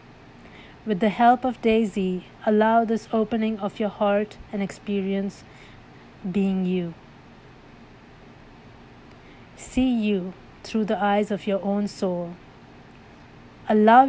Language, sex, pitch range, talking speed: English, female, 190-220 Hz, 105 wpm